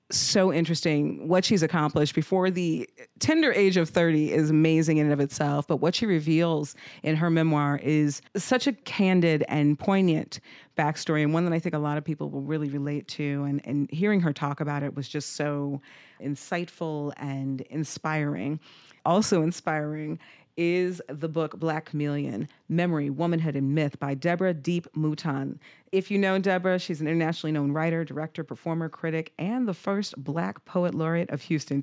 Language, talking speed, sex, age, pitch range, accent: English, 175 wpm, female, 40-59, 145-175 Hz, American